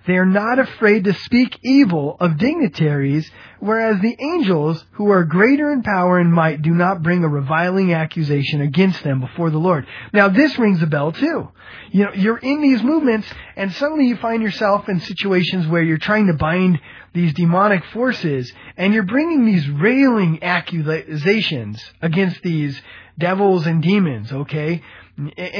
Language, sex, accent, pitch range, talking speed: English, male, American, 150-220 Hz, 160 wpm